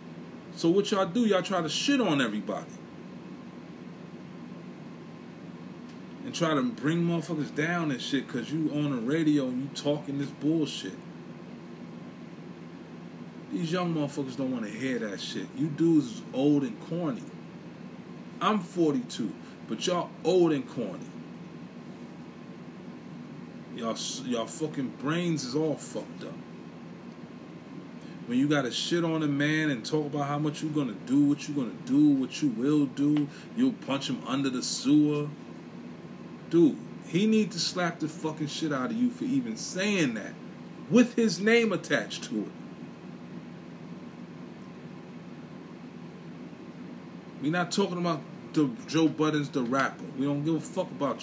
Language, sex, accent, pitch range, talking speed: English, male, American, 145-180 Hz, 140 wpm